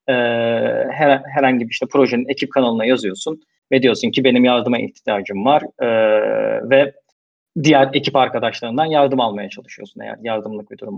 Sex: male